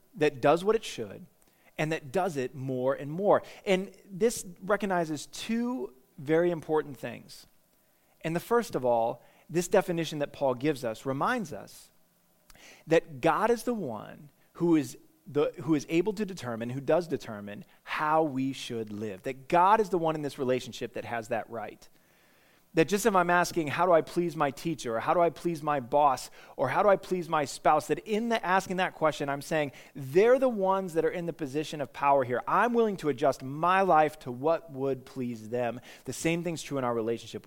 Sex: male